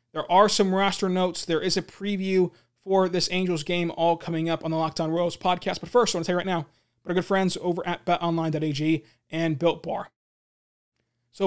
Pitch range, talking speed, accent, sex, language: 165-200 Hz, 215 wpm, American, male, English